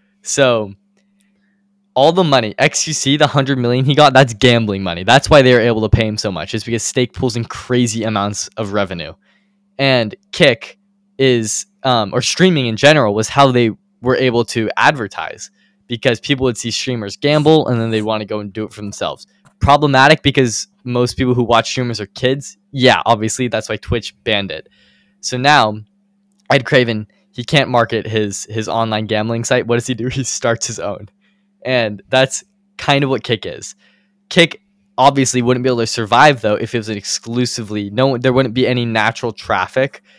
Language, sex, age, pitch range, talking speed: English, male, 10-29, 110-140 Hz, 190 wpm